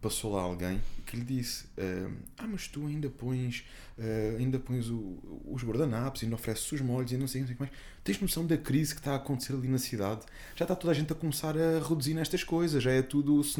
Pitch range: 120-160 Hz